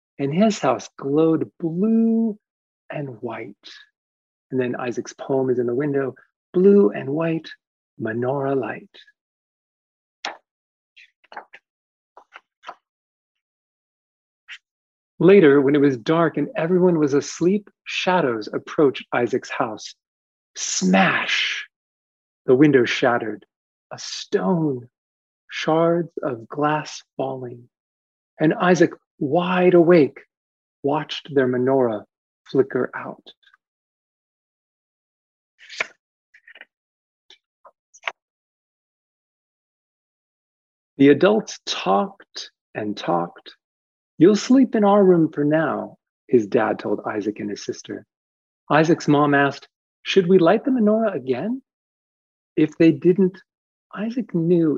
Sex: male